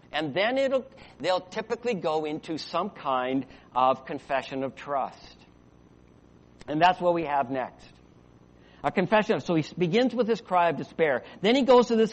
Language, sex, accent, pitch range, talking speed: English, male, American, 135-220 Hz, 175 wpm